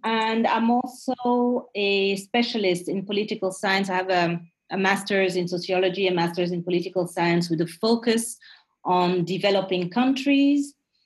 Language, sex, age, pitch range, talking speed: English, female, 40-59, 180-230 Hz, 140 wpm